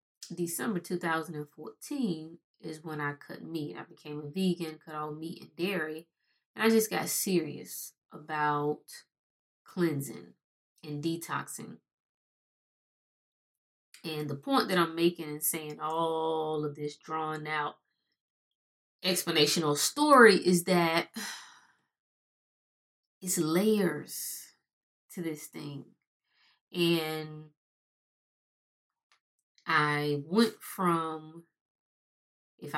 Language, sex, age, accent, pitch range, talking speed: English, female, 20-39, American, 155-220 Hz, 95 wpm